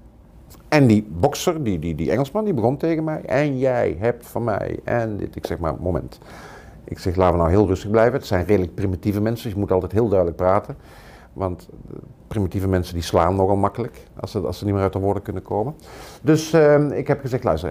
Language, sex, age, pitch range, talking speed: Dutch, male, 50-69, 90-125 Hz, 220 wpm